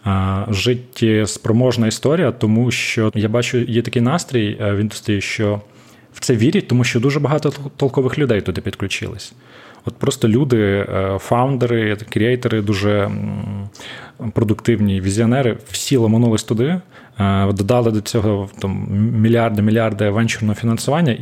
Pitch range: 105-125 Hz